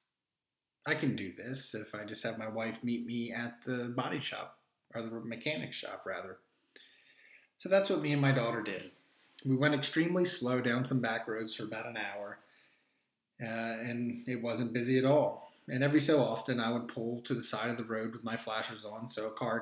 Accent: American